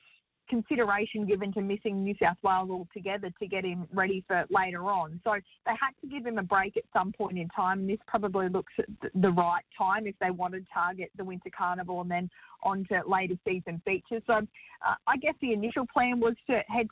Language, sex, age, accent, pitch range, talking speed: English, female, 20-39, Australian, 185-225 Hz, 215 wpm